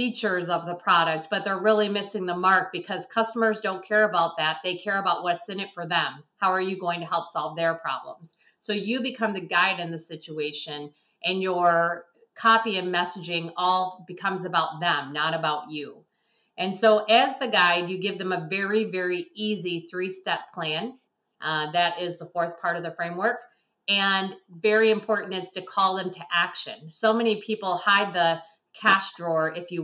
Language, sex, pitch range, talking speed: English, female, 170-200 Hz, 190 wpm